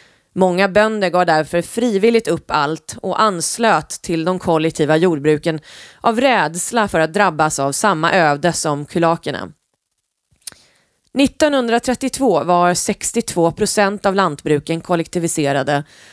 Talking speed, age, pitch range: 110 wpm, 30-49, 160-210 Hz